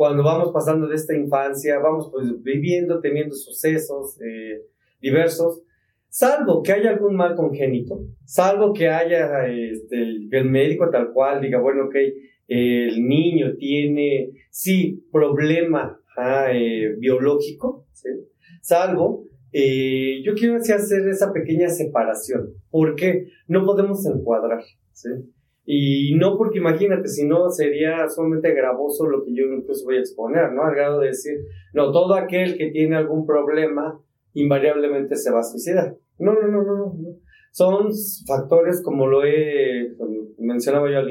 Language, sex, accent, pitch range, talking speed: Spanish, male, Mexican, 135-175 Hz, 140 wpm